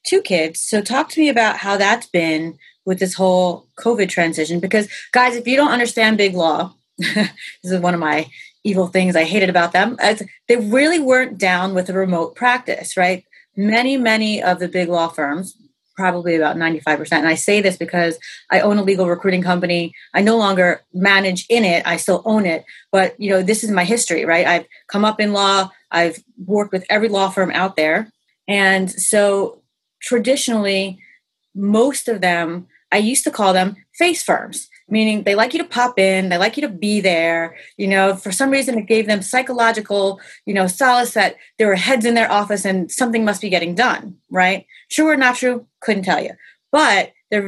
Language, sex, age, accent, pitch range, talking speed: English, female, 30-49, American, 180-230 Hz, 195 wpm